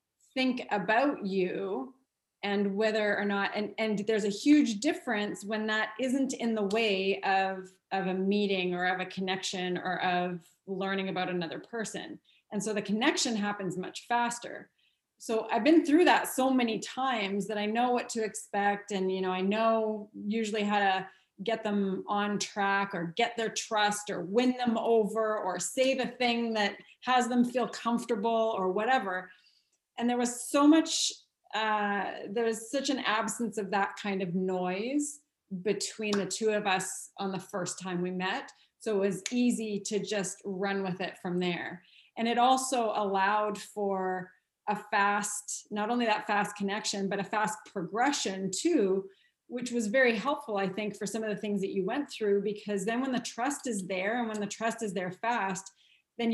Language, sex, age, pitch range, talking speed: English, female, 30-49, 195-230 Hz, 180 wpm